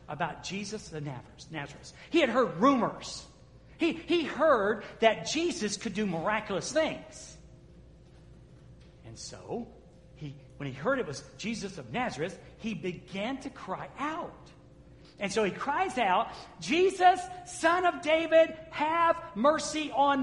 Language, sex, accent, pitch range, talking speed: English, male, American, 200-305 Hz, 130 wpm